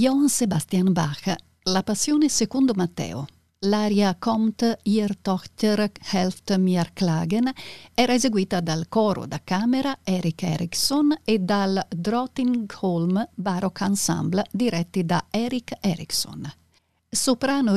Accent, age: native, 50-69